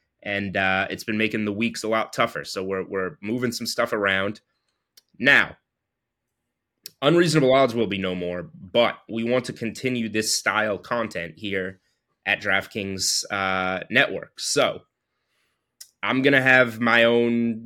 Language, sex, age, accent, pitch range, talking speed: English, male, 20-39, American, 100-115 Hz, 150 wpm